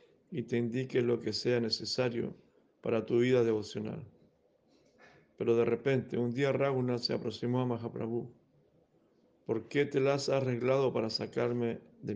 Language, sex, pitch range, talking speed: Spanish, male, 120-135 Hz, 150 wpm